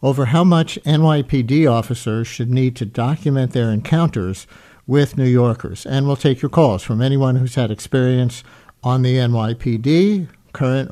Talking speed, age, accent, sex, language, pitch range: 155 wpm, 60-79, American, male, English, 115-140 Hz